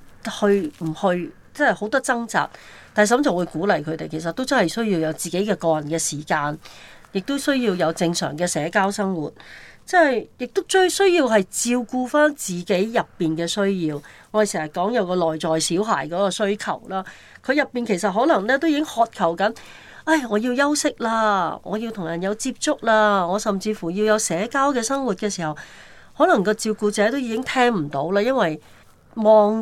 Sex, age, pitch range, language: female, 40-59, 170-230 Hz, Chinese